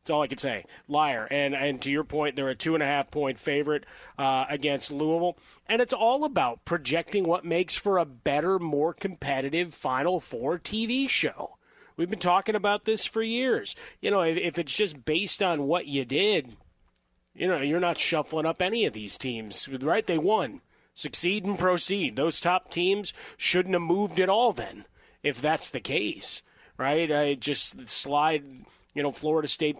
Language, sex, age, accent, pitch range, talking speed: English, male, 30-49, American, 135-165 Hz, 180 wpm